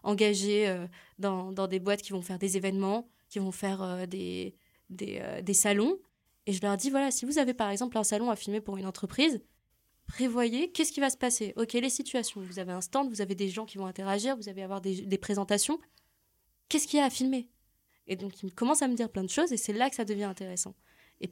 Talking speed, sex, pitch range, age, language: 235 wpm, female, 195-250 Hz, 20-39, French